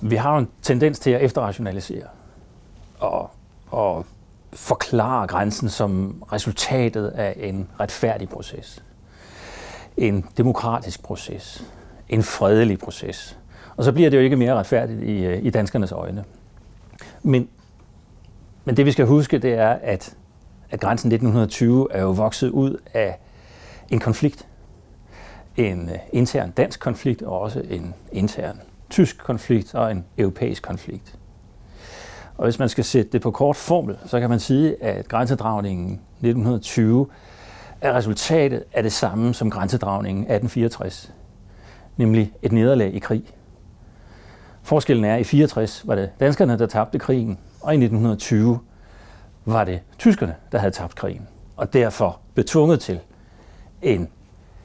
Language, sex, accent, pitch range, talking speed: Danish, male, native, 95-120 Hz, 135 wpm